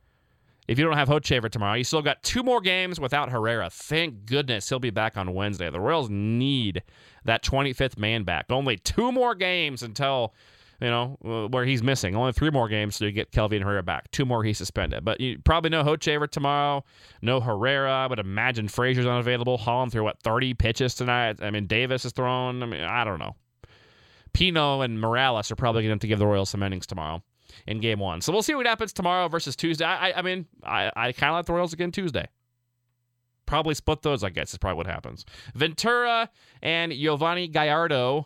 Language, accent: English, American